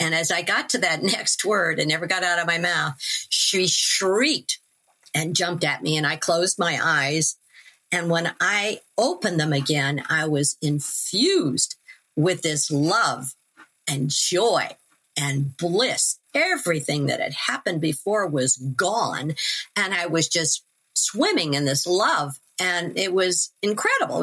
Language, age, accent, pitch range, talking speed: English, 50-69, American, 160-240 Hz, 150 wpm